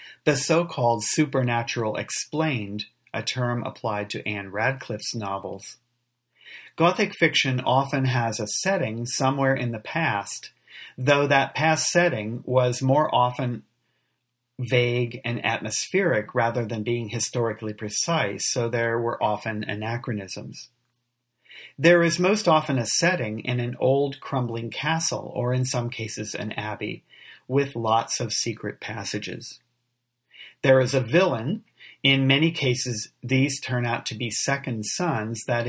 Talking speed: 130 wpm